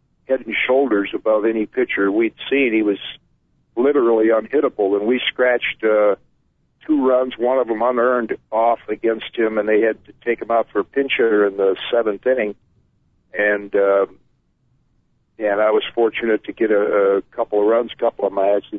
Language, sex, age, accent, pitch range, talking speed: English, male, 50-69, American, 110-130 Hz, 190 wpm